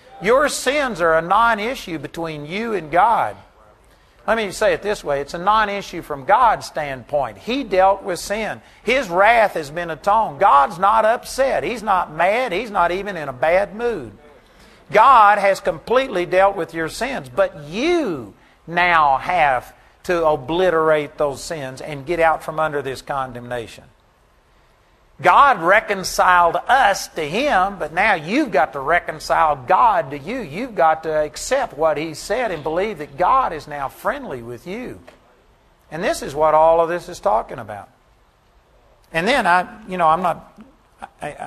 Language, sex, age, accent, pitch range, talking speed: English, male, 50-69, American, 150-200 Hz, 165 wpm